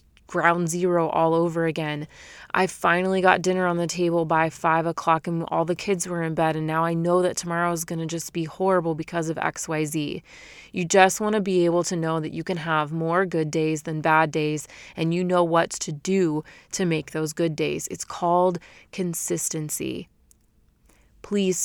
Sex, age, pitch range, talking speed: female, 30-49, 160-185 Hz, 195 wpm